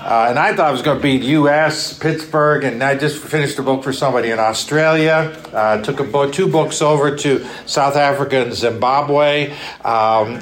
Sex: male